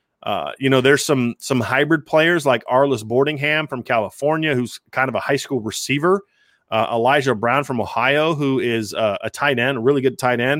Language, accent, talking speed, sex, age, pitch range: English, American, 205 wpm, male, 30-49, 125-155 Hz